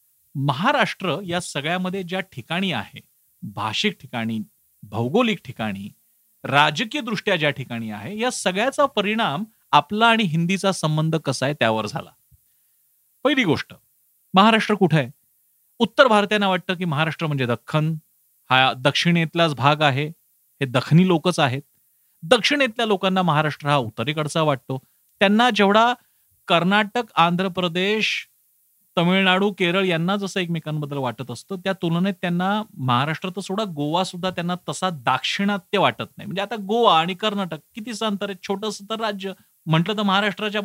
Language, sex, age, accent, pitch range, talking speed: Marathi, male, 40-59, native, 145-205 Hz, 135 wpm